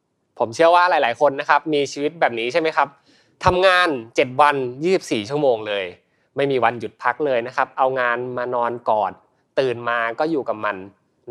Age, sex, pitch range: 20-39, male, 120-165 Hz